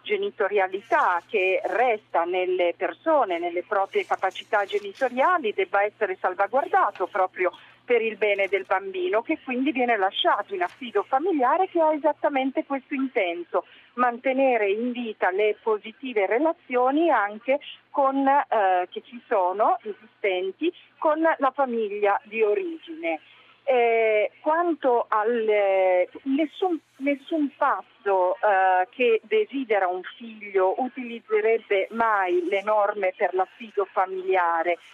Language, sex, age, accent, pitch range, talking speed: Italian, female, 40-59, native, 195-285 Hz, 115 wpm